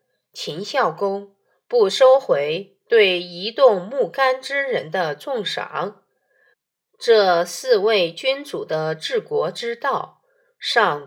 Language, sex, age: Chinese, female, 20-39